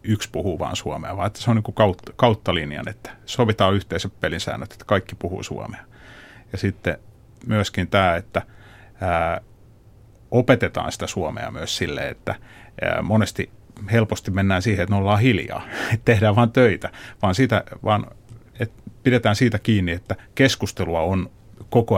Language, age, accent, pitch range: Finnish, 30-49, native, 95-115 Hz